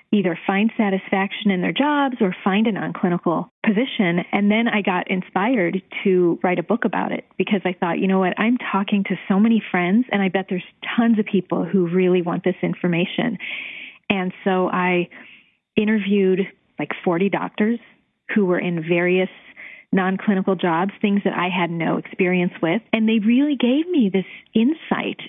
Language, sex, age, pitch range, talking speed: English, female, 30-49, 185-220 Hz, 175 wpm